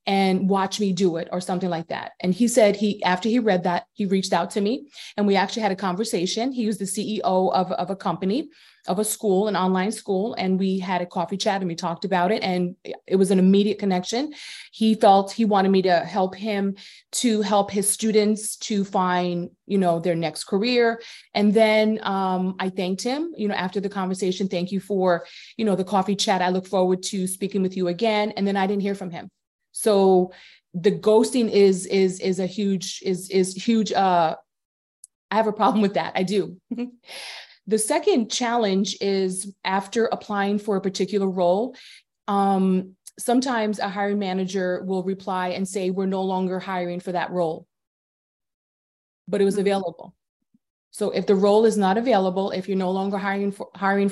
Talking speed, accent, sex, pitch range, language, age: 195 wpm, American, female, 185-210 Hz, English, 30-49